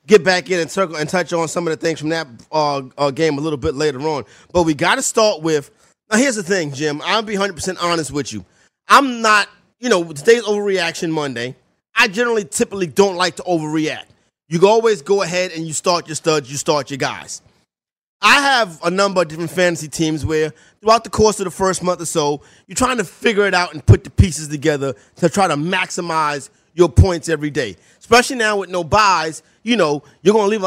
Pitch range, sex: 155-215 Hz, male